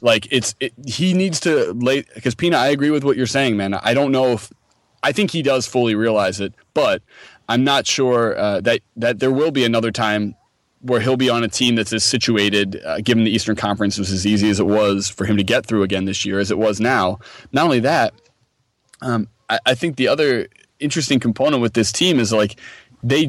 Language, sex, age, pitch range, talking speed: English, male, 20-39, 105-130 Hz, 225 wpm